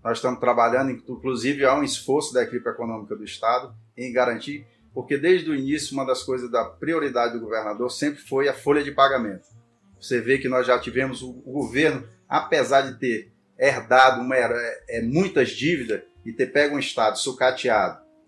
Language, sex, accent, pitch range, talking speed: Portuguese, male, Brazilian, 115-140 Hz, 175 wpm